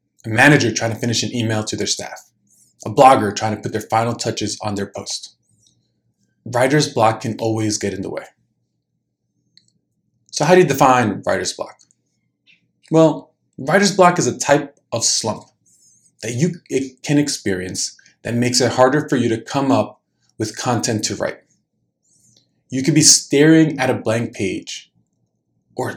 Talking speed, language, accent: 160 wpm, English, American